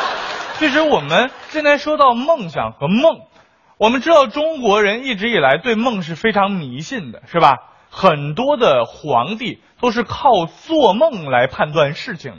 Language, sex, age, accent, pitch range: Chinese, male, 20-39, native, 145-240 Hz